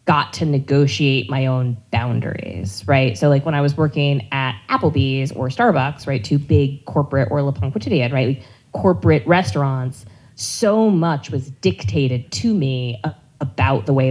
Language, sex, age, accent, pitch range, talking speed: English, female, 20-39, American, 125-155 Hz, 160 wpm